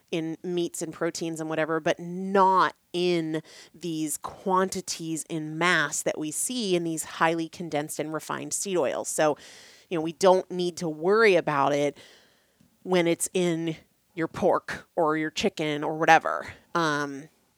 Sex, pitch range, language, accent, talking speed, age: female, 155-185 Hz, English, American, 155 wpm, 30-49